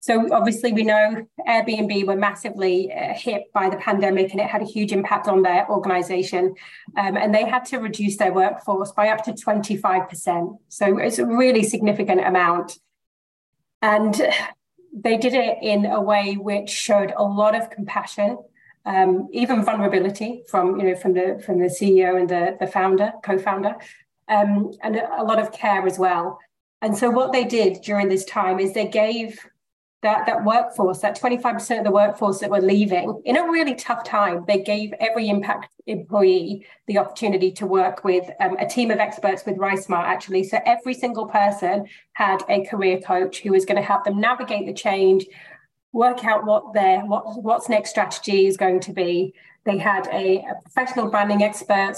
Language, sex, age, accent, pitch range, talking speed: English, female, 30-49, British, 190-220 Hz, 180 wpm